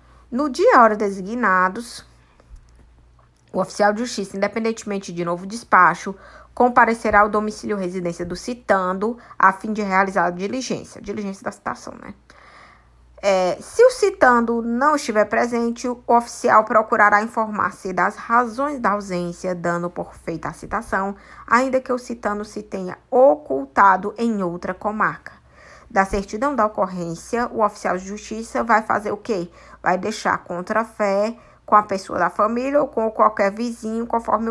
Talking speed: 145 wpm